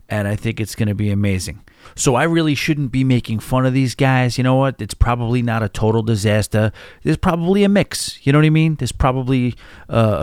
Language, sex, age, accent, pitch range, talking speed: English, male, 30-49, American, 105-140 Hz, 230 wpm